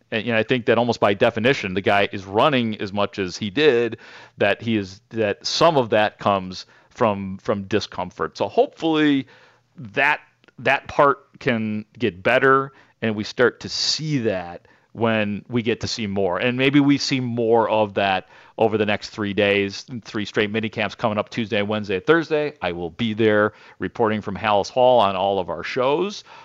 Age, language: 40-59, English